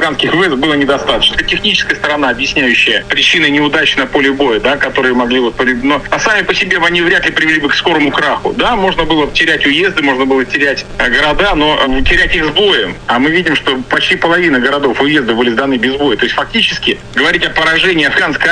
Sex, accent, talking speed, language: male, native, 200 wpm, Russian